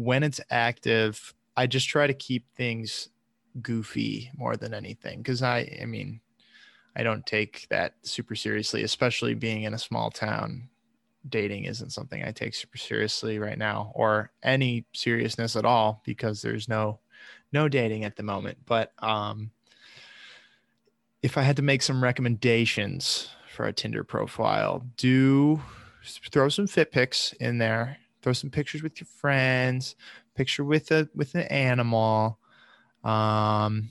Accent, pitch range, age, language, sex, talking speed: American, 110-130 Hz, 20-39, English, male, 150 wpm